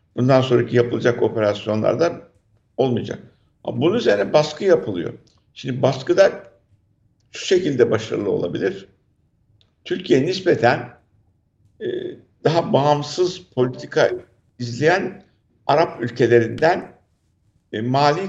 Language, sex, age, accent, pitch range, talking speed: Turkish, male, 60-79, native, 115-160 Hz, 80 wpm